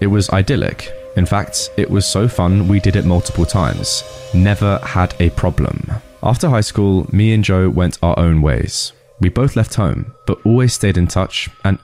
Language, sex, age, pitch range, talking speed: English, male, 20-39, 85-110 Hz, 195 wpm